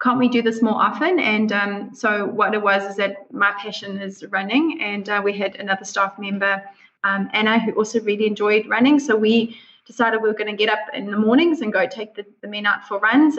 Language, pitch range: English, 205-225 Hz